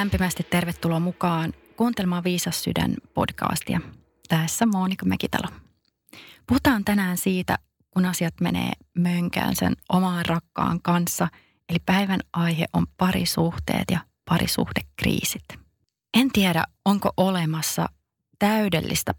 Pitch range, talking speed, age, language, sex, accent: 170-200 Hz, 105 wpm, 30-49, Finnish, female, native